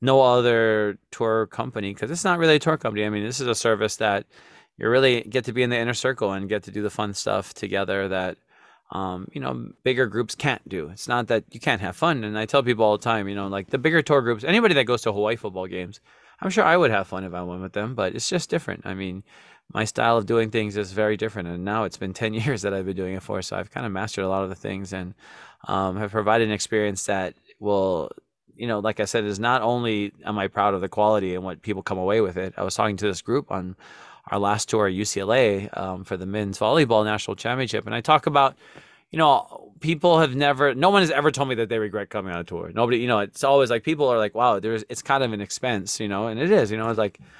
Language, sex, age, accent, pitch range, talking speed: English, male, 20-39, American, 100-120 Hz, 270 wpm